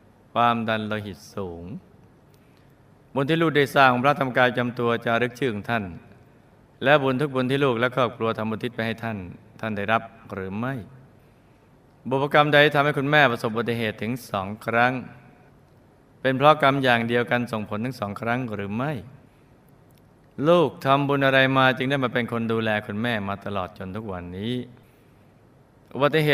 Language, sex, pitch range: Thai, male, 110-135 Hz